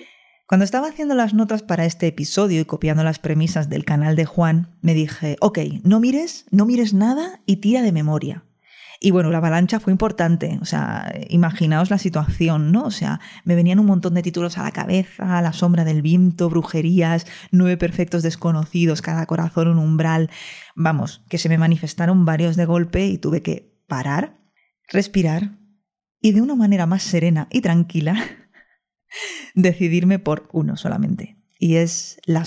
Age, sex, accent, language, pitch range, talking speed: 20-39, female, Spanish, Spanish, 160-195 Hz, 170 wpm